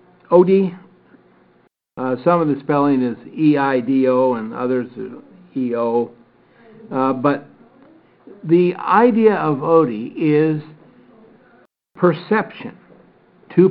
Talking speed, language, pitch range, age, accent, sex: 90 wpm, English, 135-190 Hz, 60-79, American, male